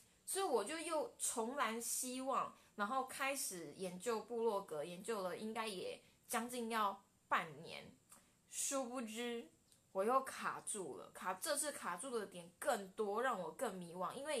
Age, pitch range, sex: 20-39, 185-240 Hz, female